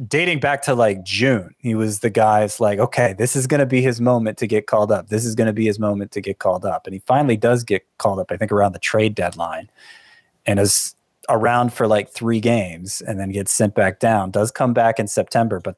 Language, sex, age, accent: English, male, 30-49, American